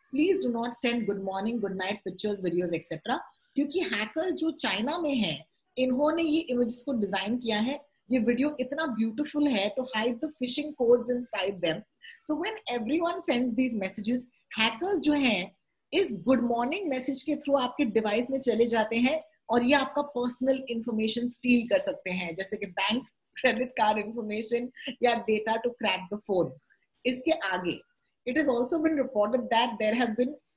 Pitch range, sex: 215-285 Hz, female